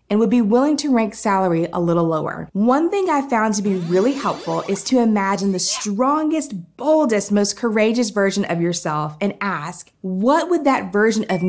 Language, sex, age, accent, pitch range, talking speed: French, female, 20-39, American, 185-245 Hz, 190 wpm